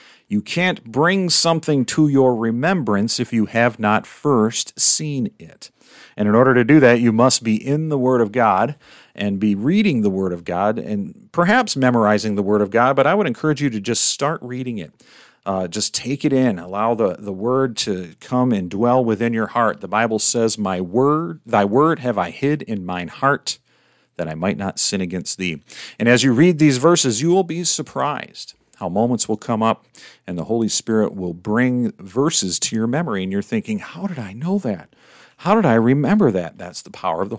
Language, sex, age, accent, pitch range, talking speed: English, male, 50-69, American, 105-145 Hz, 210 wpm